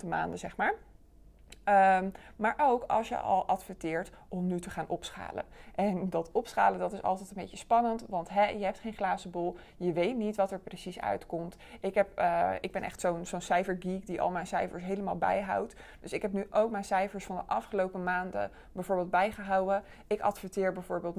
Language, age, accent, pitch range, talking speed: Dutch, 20-39, Dutch, 175-200 Hz, 185 wpm